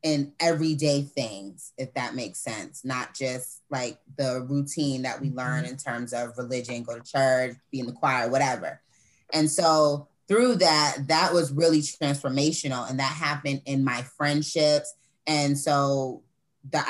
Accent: American